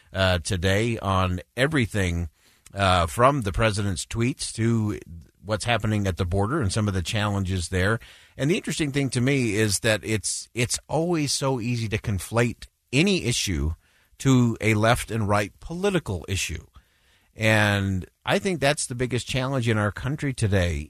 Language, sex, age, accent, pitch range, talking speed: English, male, 50-69, American, 95-130 Hz, 160 wpm